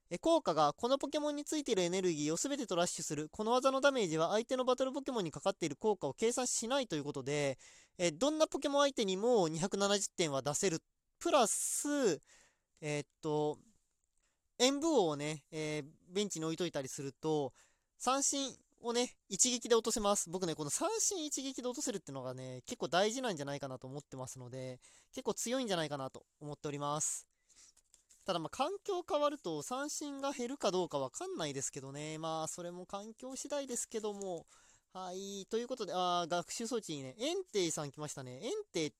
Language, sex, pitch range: Japanese, male, 150-250 Hz